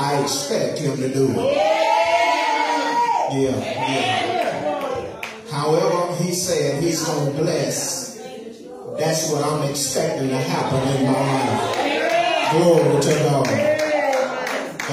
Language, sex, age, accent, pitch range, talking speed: English, male, 30-49, American, 160-250 Hz, 105 wpm